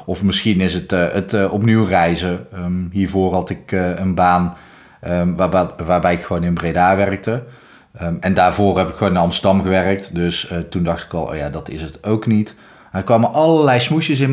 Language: Dutch